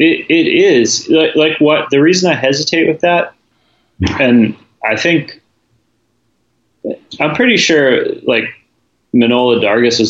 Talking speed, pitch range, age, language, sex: 130 wpm, 105-135 Hz, 30-49, English, male